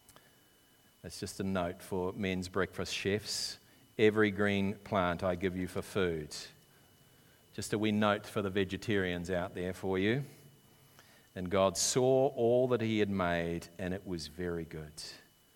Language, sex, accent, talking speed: English, male, Australian, 155 wpm